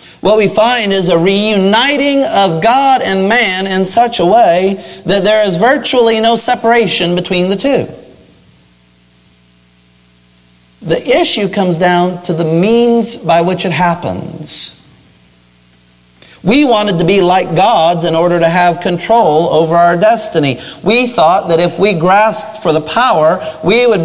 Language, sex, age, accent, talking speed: English, male, 40-59, American, 145 wpm